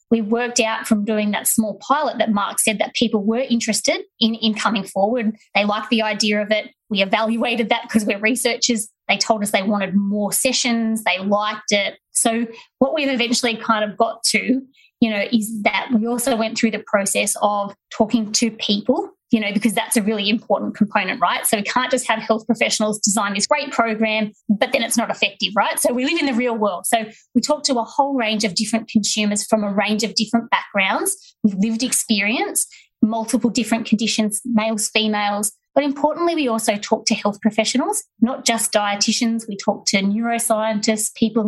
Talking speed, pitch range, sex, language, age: 195 wpm, 215-240 Hz, female, English, 20-39